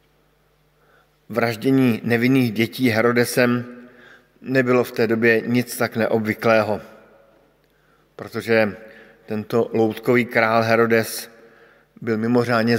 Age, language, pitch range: 50-69, Slovak, 115-135 Hz